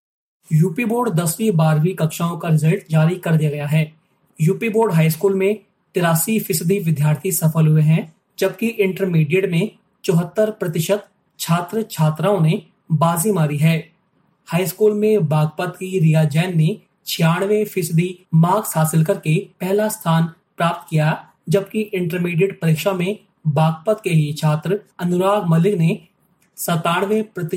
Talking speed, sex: 135 wpm, male